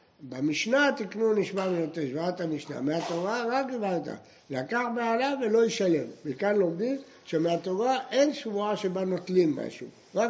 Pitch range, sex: 160-220 Hz, male